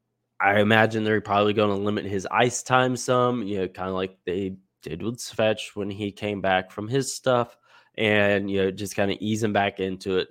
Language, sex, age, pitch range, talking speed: English, male, 10-29, 95-110 Hz, 215 wpm